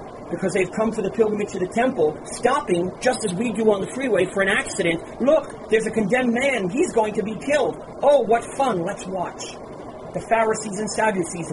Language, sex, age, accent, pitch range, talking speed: English, male, 40-59, American, 165-215 Hz, 205 wpm